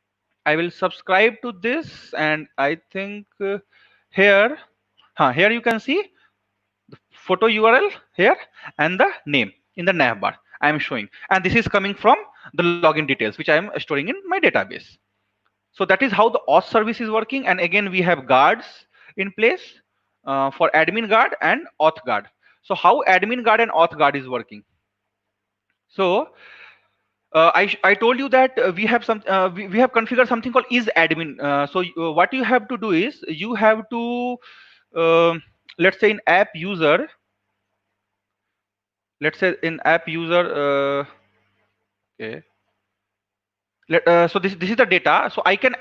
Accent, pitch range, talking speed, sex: Indian, 150-230 Hz, 170 wpm, male